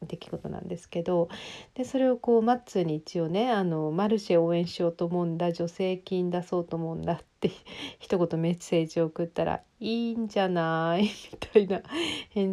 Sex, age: female, 40-59